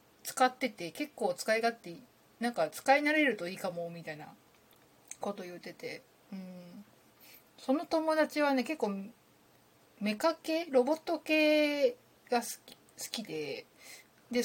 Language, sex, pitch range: Japanese, female, 180-290 Hz